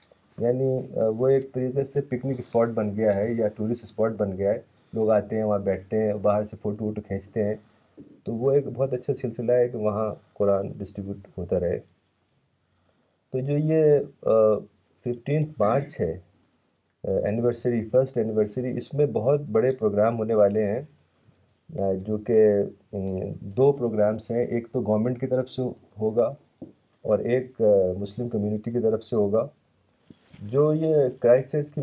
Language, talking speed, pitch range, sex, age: Urdu, 155 wpm, 105-130 Hz, male, 30-49